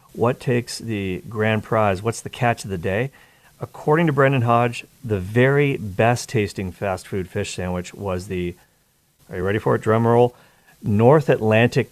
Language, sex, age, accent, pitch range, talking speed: English, male, 40-59, American, 95-130 Hz, 170 wpm